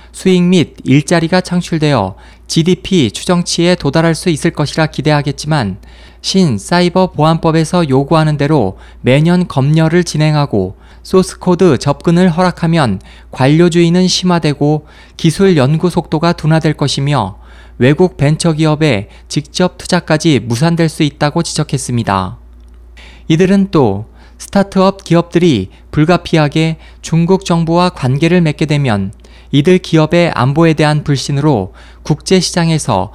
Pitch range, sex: 130-175 Hz, male